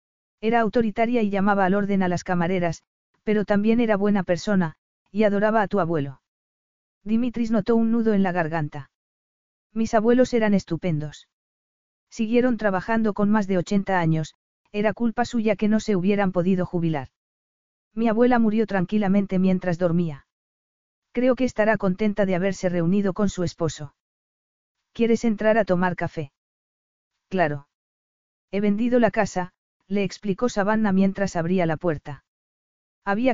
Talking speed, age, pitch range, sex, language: 145 wpm, 40-59, 175-220 Hz, female, Spanish